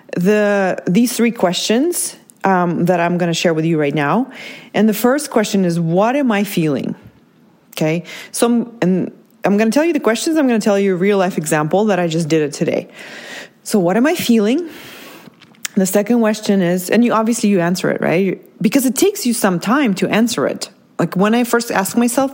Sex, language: female, English